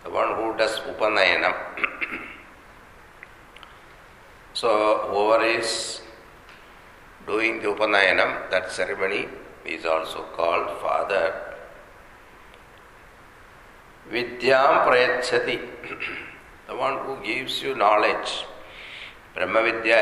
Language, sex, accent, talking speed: English, male, Indian, 80 wpm